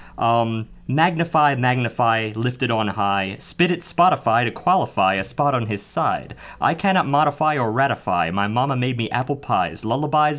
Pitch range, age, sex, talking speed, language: 115-150 Hz, 30-49, male, 160 wpm, English